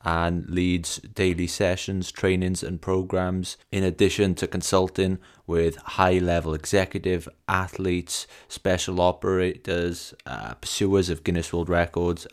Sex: male